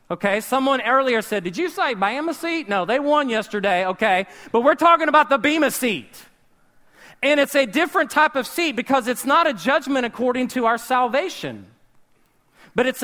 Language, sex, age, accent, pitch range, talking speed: English, male, 40-59, American, 180-265 Hz, 180 wpm